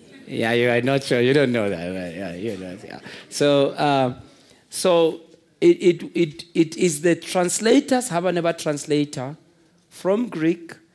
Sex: male